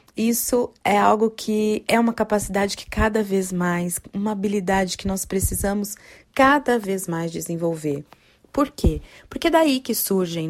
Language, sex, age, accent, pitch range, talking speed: Portuguese, female, 20-39, Brazilian, 165-215 Hz, 155 wpm